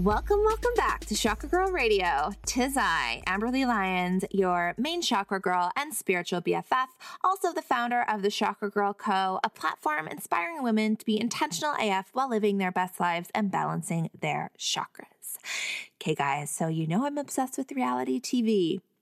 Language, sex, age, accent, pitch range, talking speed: English, female, 20-39, American, 175-245 Hz, 165 wpm